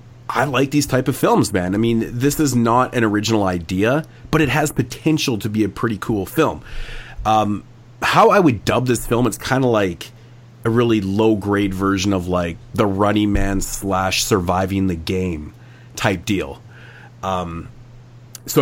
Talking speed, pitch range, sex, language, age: 175 wpm, 100-120 Hz, male, English, 30-49